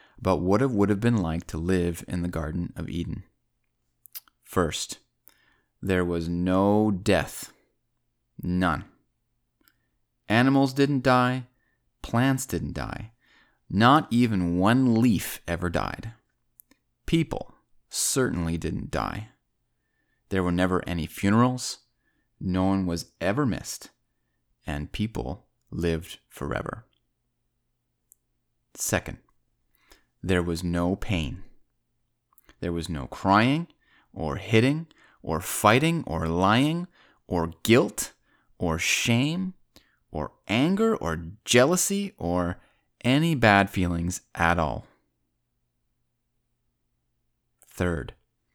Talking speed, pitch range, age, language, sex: 100 wpm, 75-115 Hz, 30-49, English, male